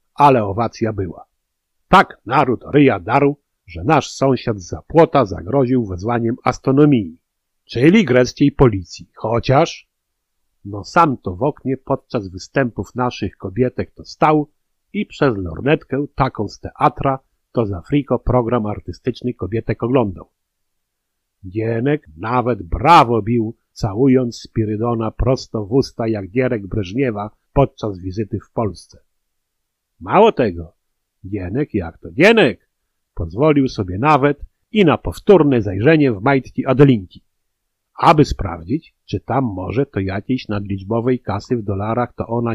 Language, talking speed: Polish, 125 wpm